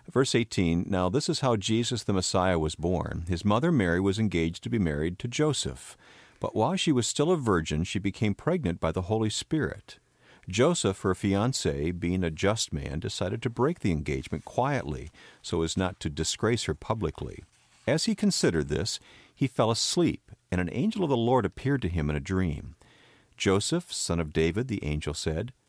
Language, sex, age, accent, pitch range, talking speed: English, male, 50-69, American, 85-125 Hz, 190 wpm